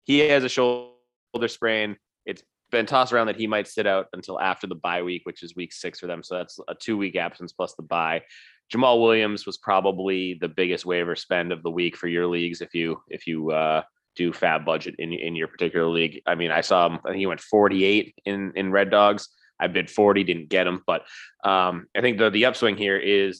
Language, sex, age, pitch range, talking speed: English, male, 20-39, 90-110 Hz, 235 wpm